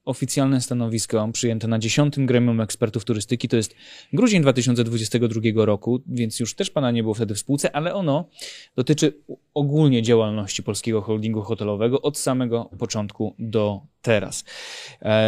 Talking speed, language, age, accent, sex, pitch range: 140 wpm, Polish, 20-39, native, male, 110-140 Hz